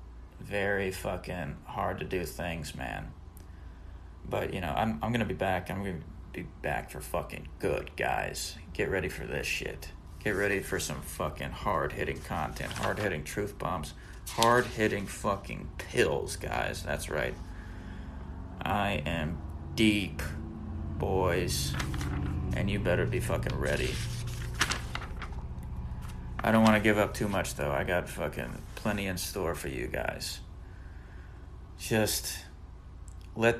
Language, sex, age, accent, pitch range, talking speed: English, male, 30-49, American, 80-105 Hz, 130 wpm